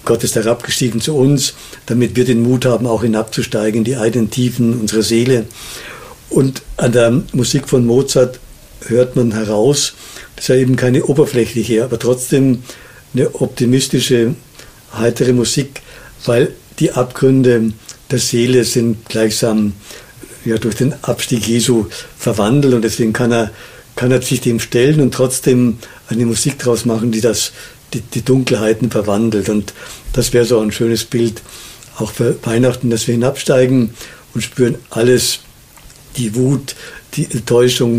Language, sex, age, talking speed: German, male, 60-79, 140 wpm